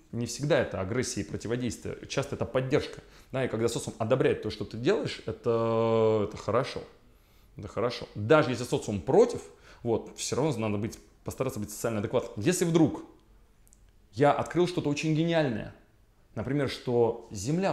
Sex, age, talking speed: male, 20-39, 150 wpm